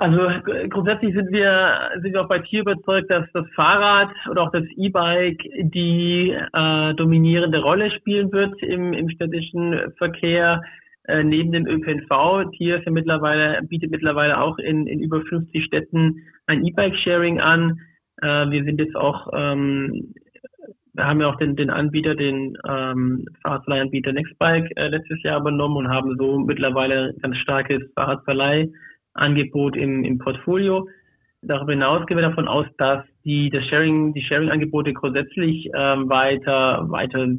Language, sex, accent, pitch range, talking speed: German, male, German, 145-175 Hz, 150 wpm